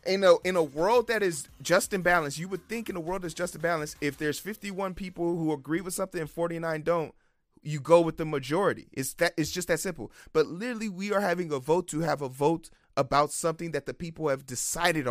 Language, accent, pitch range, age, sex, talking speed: English, American, 155-195 Hz, 30-49, male, 230 wpm